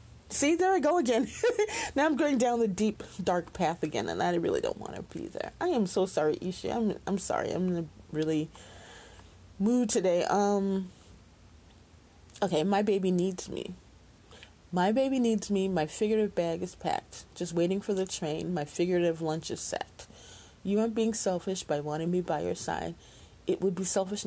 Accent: American